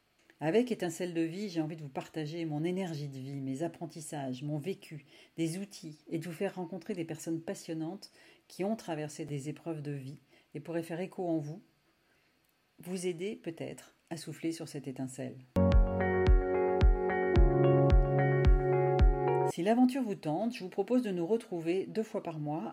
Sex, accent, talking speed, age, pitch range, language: female, French, 165 wpm, 40-59, 150-195 Hz, French